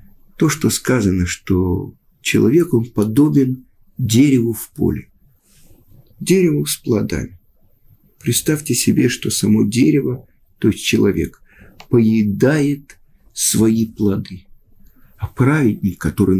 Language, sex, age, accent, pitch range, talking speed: Russian, male, 50-69, native, 105-150 Hz, 100 wpm